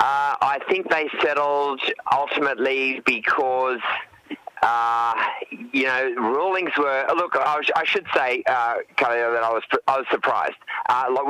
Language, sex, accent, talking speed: English, male, Australian, 140 wpm